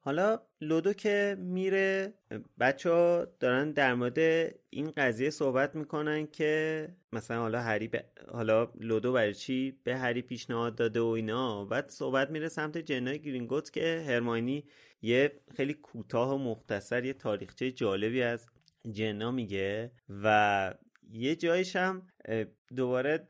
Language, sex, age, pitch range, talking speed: Persian, male, 30-49, 120-155 Hz, 125 wpm